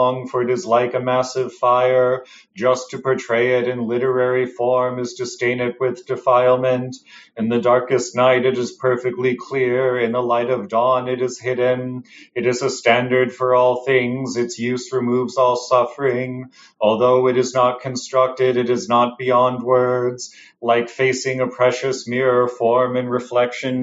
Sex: male